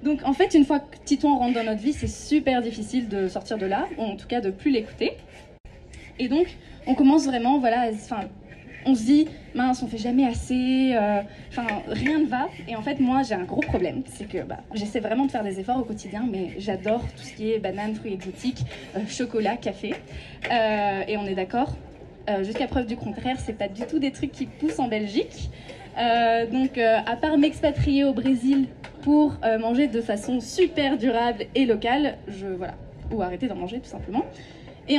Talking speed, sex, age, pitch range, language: 210 wpm, female, 20-39, 220-280 Hz, French